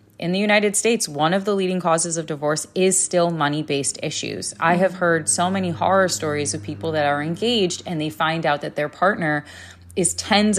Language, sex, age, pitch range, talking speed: English, female, 20-39, 140-185 Hz, 205 wpm